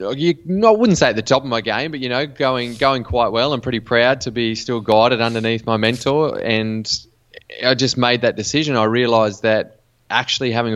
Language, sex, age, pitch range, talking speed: English, male, 20-39, 100-115 Hz, 210 wpm